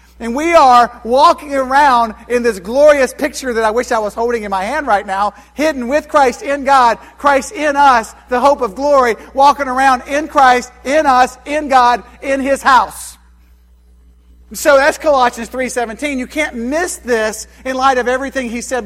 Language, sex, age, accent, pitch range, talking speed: English, male, 50-69, American, 205-265 Hz, 180 wpm